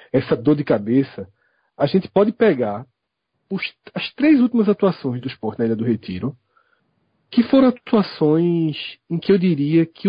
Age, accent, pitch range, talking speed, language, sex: 40-59, Brazilian, 135-215 Hz, 160 wpm, Portuguese, male